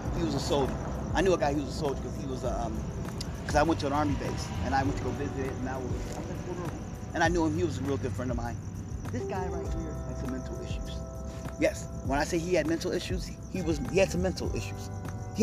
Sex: male